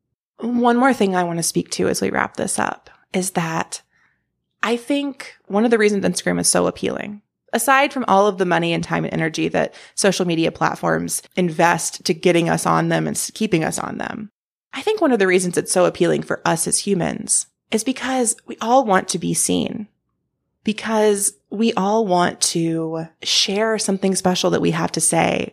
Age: 20-39